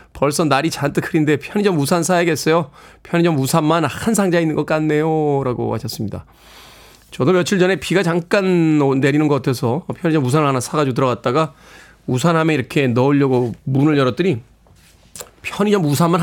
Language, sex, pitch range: Korean, male, 140-185 Hz